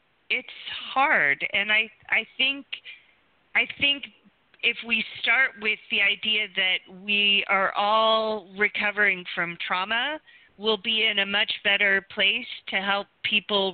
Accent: American